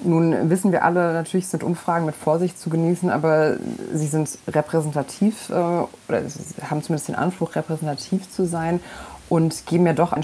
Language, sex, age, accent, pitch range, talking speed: German, female, 30-49, German, 150-170 Hz, 170 wpm